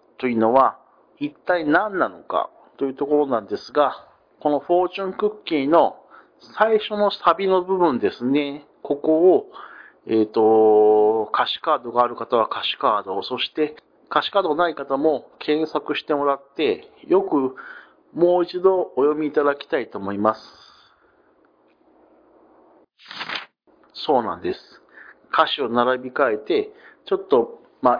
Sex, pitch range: male, 140-205 Hz